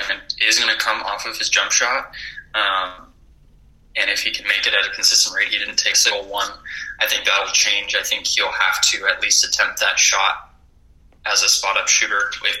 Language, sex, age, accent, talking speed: English, male, 20-39, American, 215 wpm